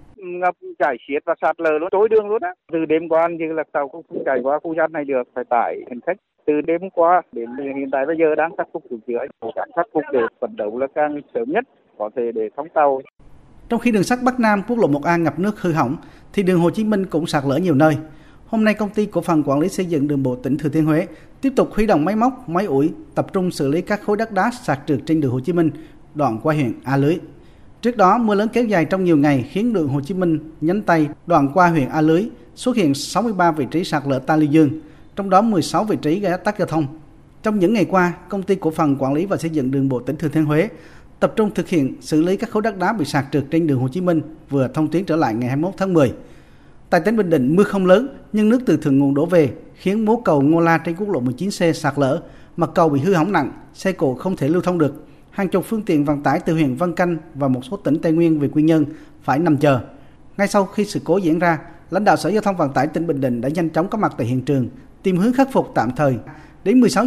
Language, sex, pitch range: Vietnamese, male, 145-185 Hz